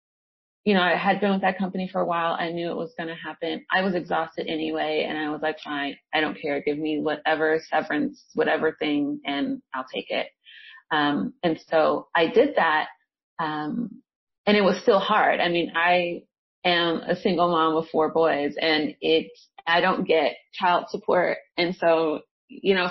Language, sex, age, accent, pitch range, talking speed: English, female, 30-49, American, 155-210 Hz, 190 wpm